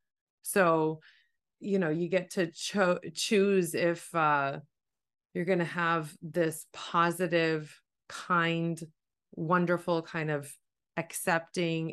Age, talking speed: 30-49, 100 wpm